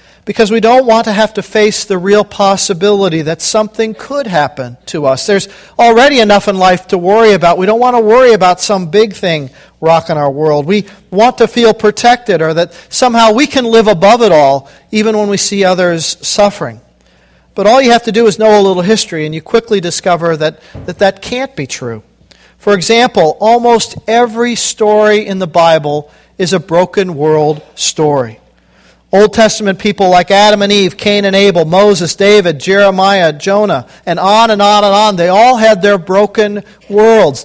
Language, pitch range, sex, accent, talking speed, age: English, 175-215 Hz, male, American, 185 wpm, 50-69